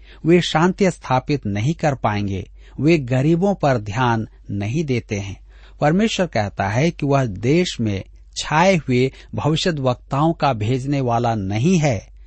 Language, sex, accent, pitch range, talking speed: Hindi, male, native, 105-160 Hz, 140 wpm